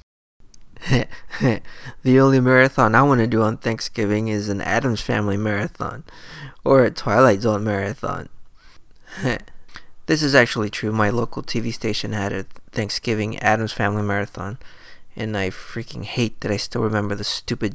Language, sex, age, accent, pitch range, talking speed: English, male, 20-39, American, 100-120 Hz, 150 wpm